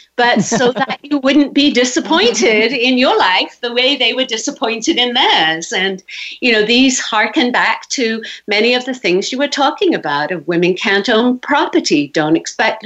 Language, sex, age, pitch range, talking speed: English, female, 50-69, 220-285 Hz, 180 wpm